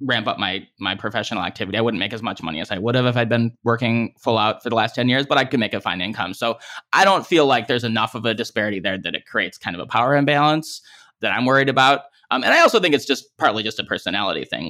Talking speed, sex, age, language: 280 wpm, male, 20-39, English